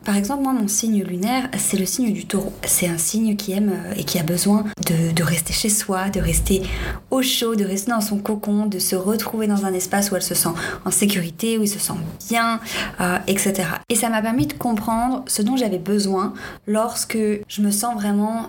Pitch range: 185-220 Hz